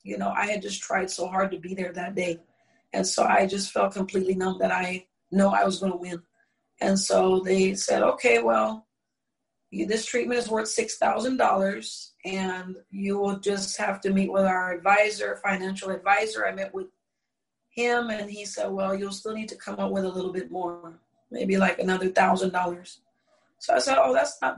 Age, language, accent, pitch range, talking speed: 40-59, English, American, 185-210 Hz, 200 wpm